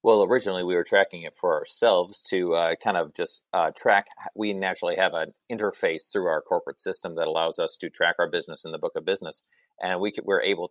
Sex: male